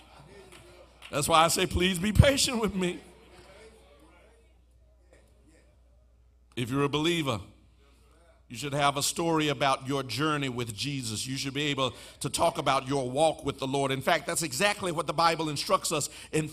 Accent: American